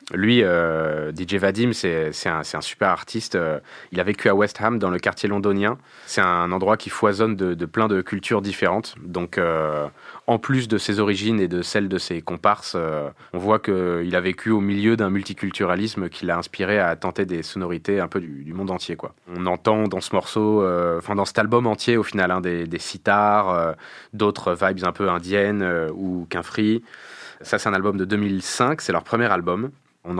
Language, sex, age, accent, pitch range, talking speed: French, male, 20-39, French, 90-110 Hz, 215 wpm